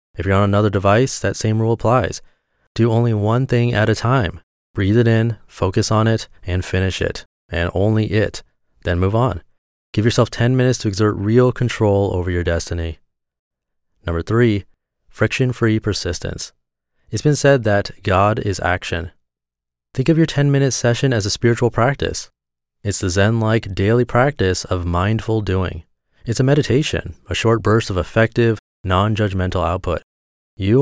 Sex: male